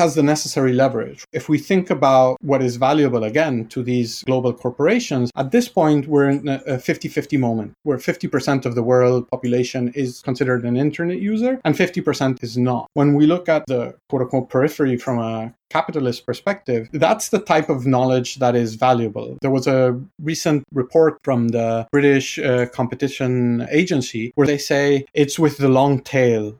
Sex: male